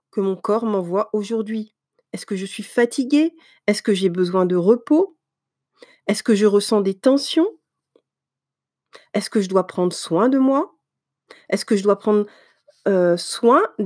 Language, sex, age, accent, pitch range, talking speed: French, female, 40-59, French, 195-255 Hz, 160 wpm